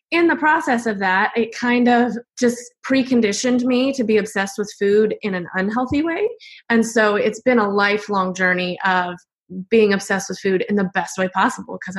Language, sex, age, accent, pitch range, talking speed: English, female, 20-39, American, 205-255 Hz, 190 wpm